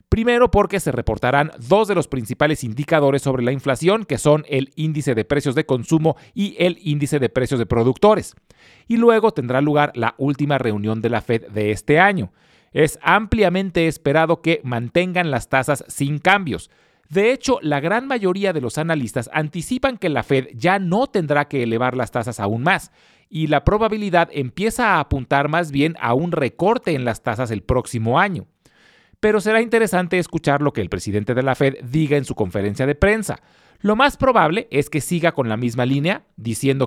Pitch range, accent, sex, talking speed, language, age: 125-175 Hz, Mexican, male, 185 wpm, Spanish, 40-59